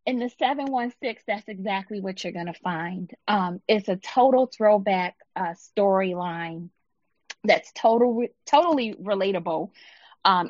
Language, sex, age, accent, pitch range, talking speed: English, female, 30-49, American, 185-225 Hz, 145 wpm